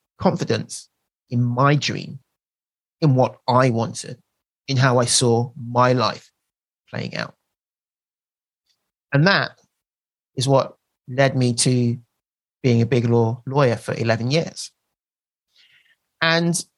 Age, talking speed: 30-49, 115 wpm